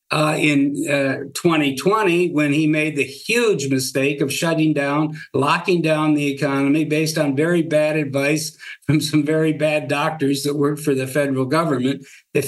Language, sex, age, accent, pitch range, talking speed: English, male, 60-79, American, 145-170 Hz, 165 wpm